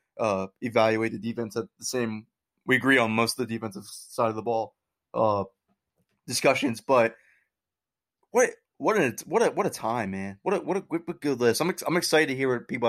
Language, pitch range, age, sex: English, 115-135 Hz, 20-39, male